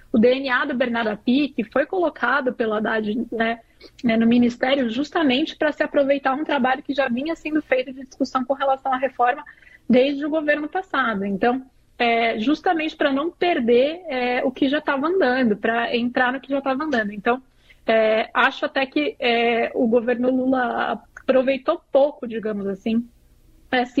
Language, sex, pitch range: Portuguese, female, 225-270 Hz